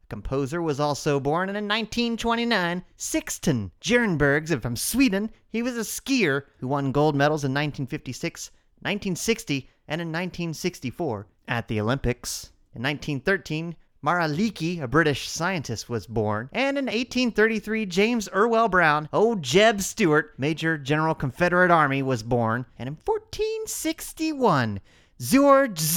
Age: 30-49